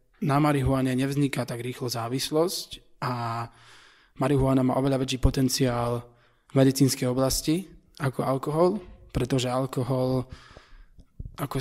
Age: 20-39